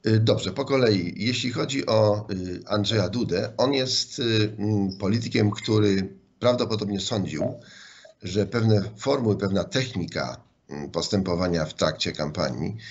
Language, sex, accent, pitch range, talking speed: Polish, male, native, 85-105 Hz, 105 wpm